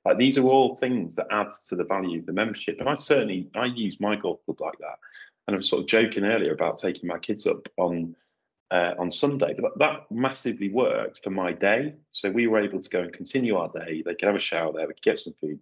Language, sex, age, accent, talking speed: English, male, 30-49, British, 255 wpm